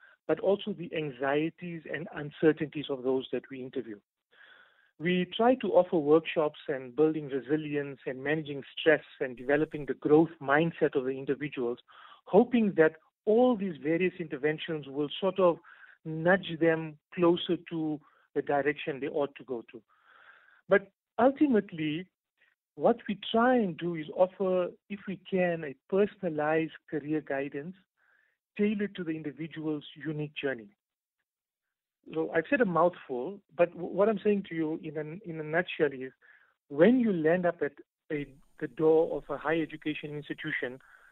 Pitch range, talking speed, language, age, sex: 150-185 Hz, 145 wpm, English, 50-69, male